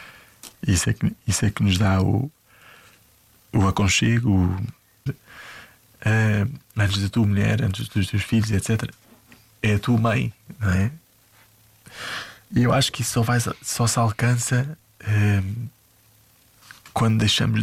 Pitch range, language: 100-115 Hz, Portuguese